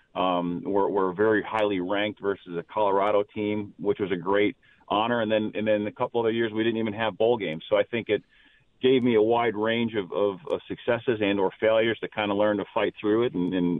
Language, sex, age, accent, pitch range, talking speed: English, male, 40-59, American, 95-110 Hz, 240 wpm